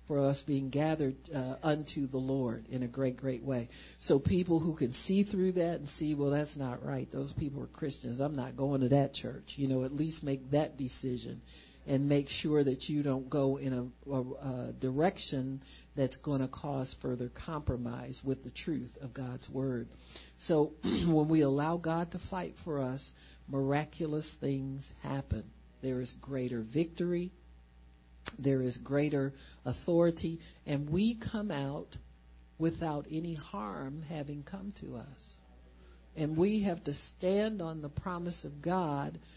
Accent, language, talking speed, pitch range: American, English, 165 wpm, 130-165 Hz